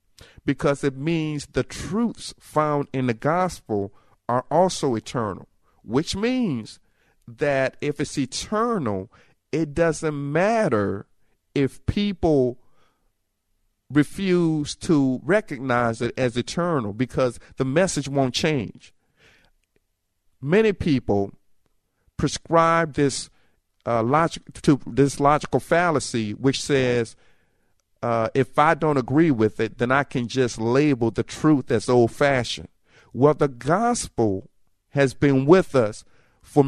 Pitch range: 115-160 Hz